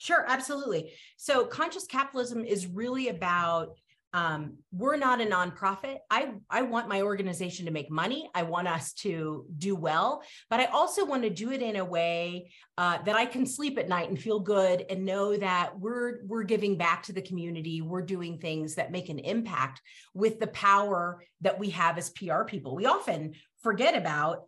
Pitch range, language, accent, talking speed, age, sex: 165-220 Hz, English, American, 190 wpm, 30-49, female